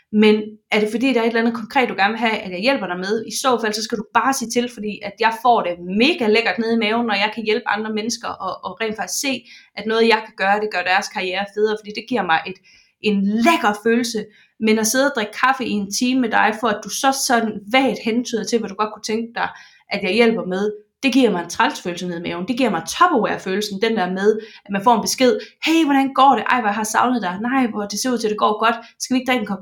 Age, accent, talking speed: 20-39, native, 280 wpm